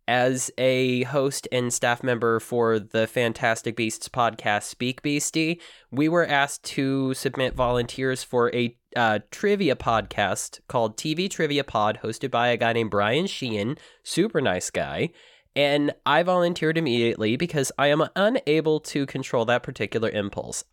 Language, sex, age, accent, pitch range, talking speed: English, male, 20-39, American, 120-160 Hz, 150 wpm